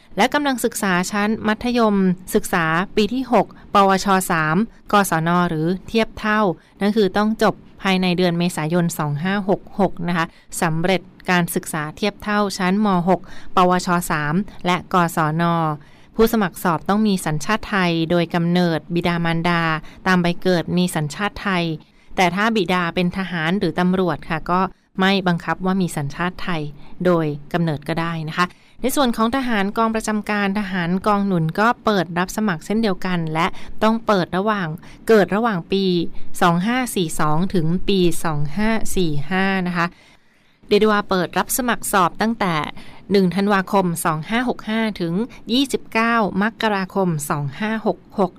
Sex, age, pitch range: female, 20-39, 170-205 Hz